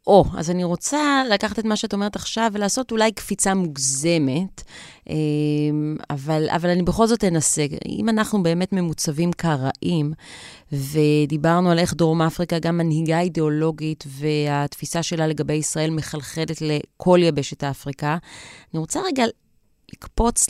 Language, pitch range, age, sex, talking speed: Hebrew, 155-190 Hz, 30-49, female, 135 wpm